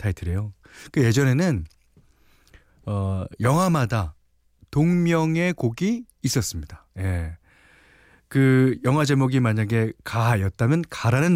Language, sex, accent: Korean, male, native